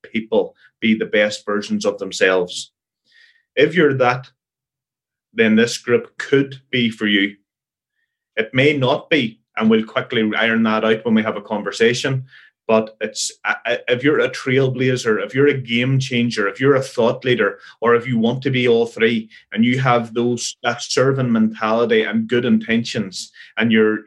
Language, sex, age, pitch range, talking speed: English, male, 30-49, 115-150 Hz, 170 wpm